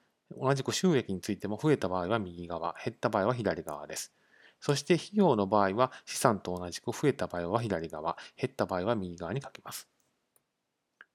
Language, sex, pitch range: Japanese, male, 95-130 Hz